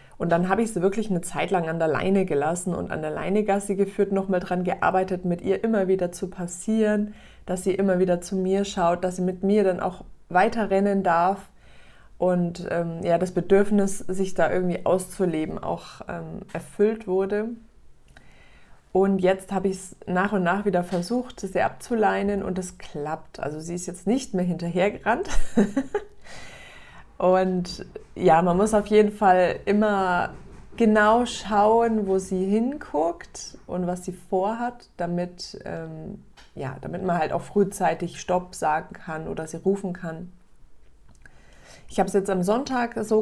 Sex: female